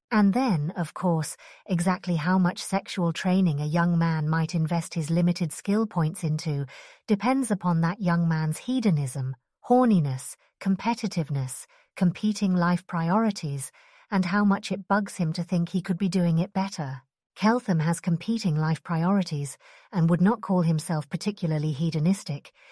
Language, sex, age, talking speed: English, female, 40-59, 150 wpm